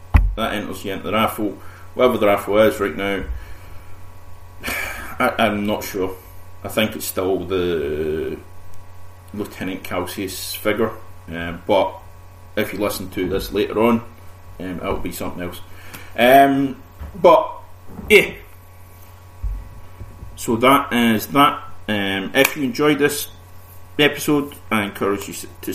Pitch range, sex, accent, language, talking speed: 90-110 Hz, male, British, English, 125 wpm